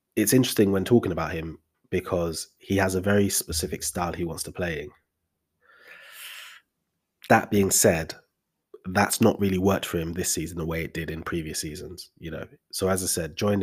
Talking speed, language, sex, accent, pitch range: 190 wpm, English, male, British, 80-95 Hz